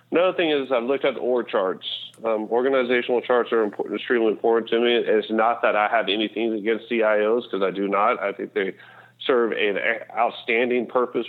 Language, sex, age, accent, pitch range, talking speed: English, male, 40-59, American, 105-120 Hz, 195 wpm